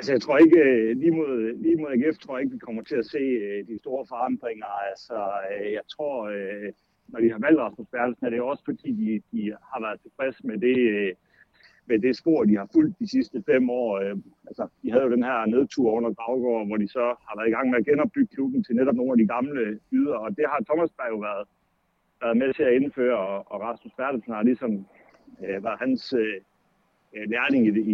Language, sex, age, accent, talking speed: Danish, male, 60-79, native, 210 wpm